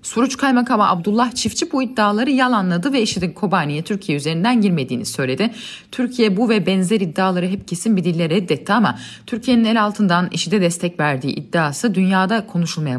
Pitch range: 150-220 Hz